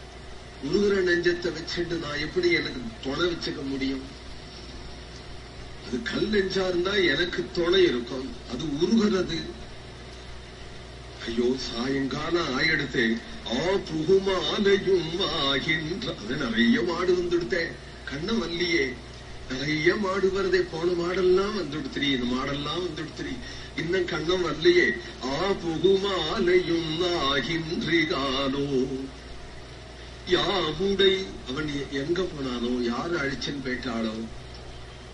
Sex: male